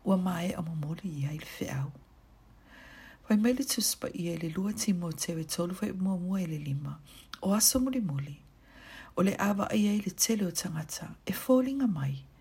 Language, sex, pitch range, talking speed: English, female, 165-215 Hz, 185 wpm